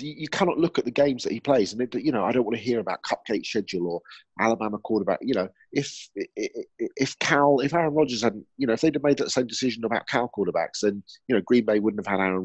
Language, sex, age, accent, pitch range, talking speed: English, male, 30-49, British, 90-130 Hz, 265 wpm